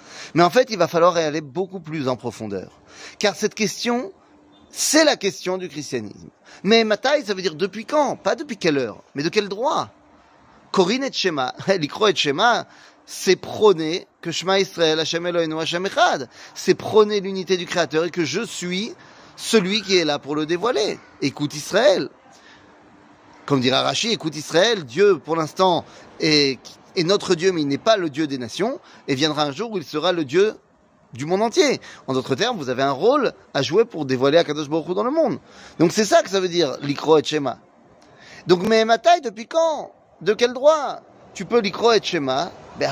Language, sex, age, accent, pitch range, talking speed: French, male, 30-49, French, 145-205 Hz, 195 wpm